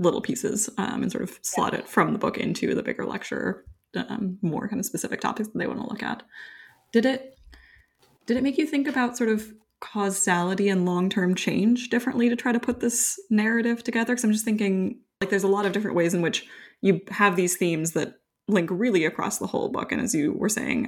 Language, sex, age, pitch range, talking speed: English, female, 20-39, 170-230 Hz, 225 wpm